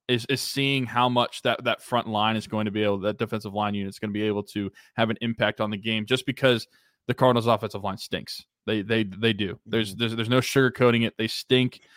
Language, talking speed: English, 250 wpm